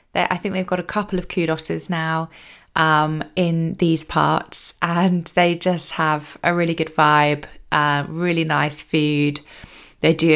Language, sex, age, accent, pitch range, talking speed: English, female, 20-39, British, 160-190 Hz, 155 wpm